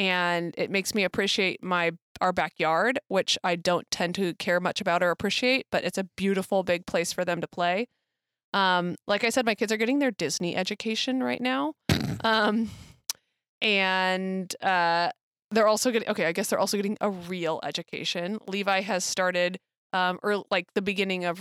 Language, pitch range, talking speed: English, 185-220 Hz, 180 wpm